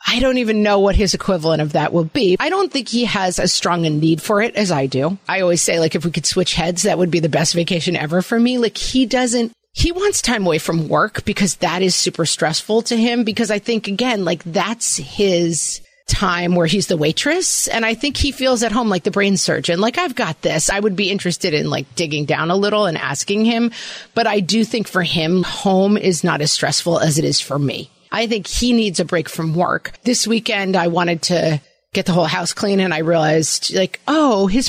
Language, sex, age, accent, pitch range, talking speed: English, female, 30-49, American, 165-220 Hz, 240 wpm